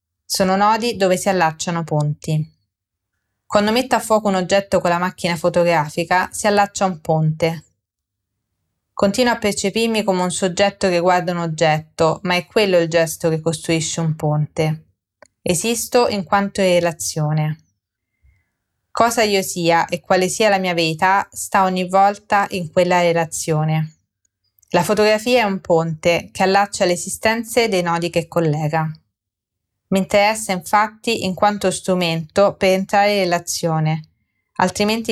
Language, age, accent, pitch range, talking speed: Italian, 20-39, native, 160-200 Hz, 140 wpm